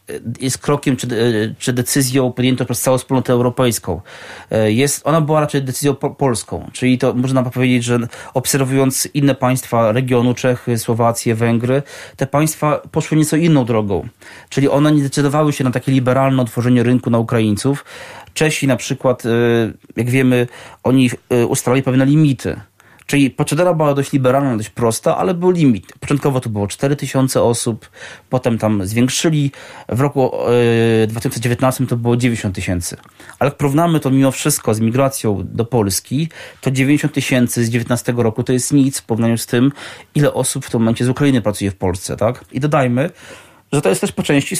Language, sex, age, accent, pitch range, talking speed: Polish, male, 30-49, native, 115-140 Hz, 165 wpm